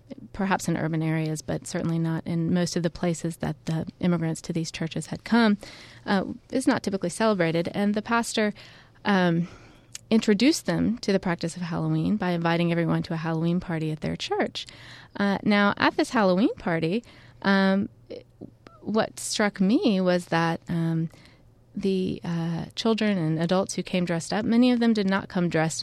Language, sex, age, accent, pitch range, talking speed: English, female, 20-39, American, 160-190 Hz, 175 wpm